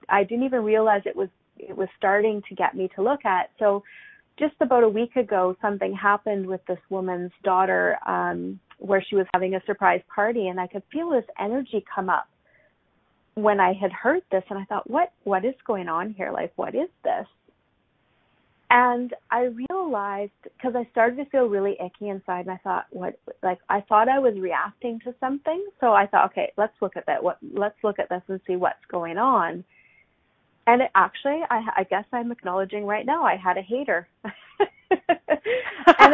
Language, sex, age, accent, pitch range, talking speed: English, female, 30-49, American, 195-265 Hz, 195 wpm